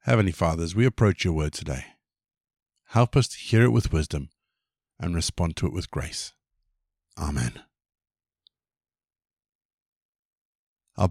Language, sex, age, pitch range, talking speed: English, male, 50-69, 85-120 Hz, 125 wpm